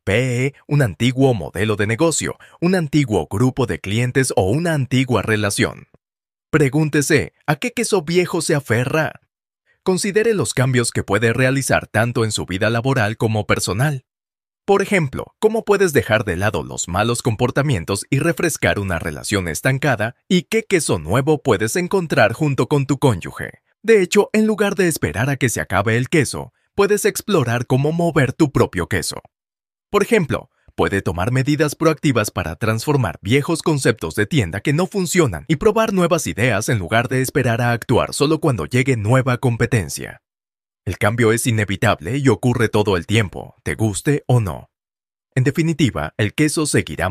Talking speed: 160 wpm